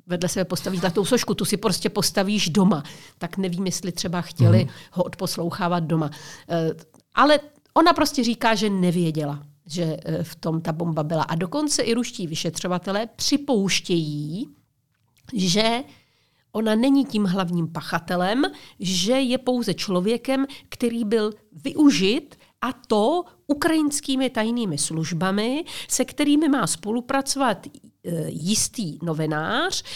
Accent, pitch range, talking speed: native, 170-230 Hz, 120 wpm